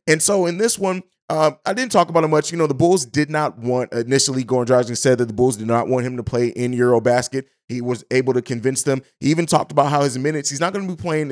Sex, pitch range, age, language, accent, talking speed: male, 125-170 Hz, 30-49, English, American, 275 wpm